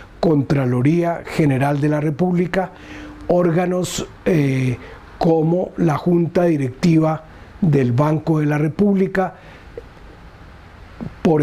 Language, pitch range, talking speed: Spanish, 140-180 Hz, 90 wpm